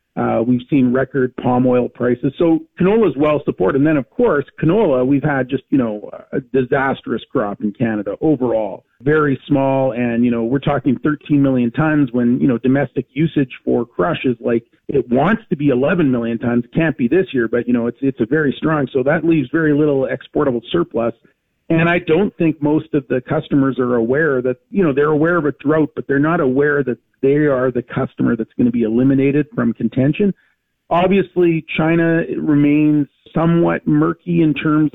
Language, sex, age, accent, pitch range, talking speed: English, male, 40-59, American, 125-155 Hz, 195 wpm